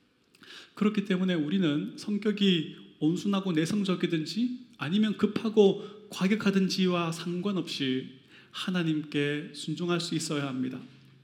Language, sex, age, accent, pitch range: Korean, male, 30-49, native, 160-205 Hz